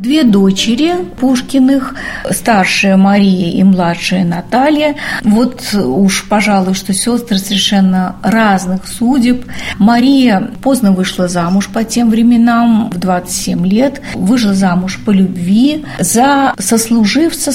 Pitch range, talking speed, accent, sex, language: 195-250 Hz, 110 wpm, native, female, Russian